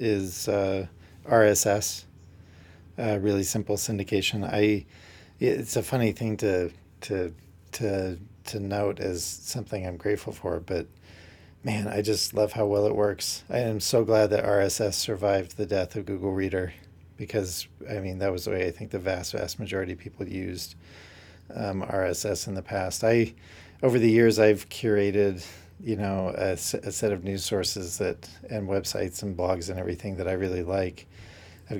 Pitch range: 90-105 Hz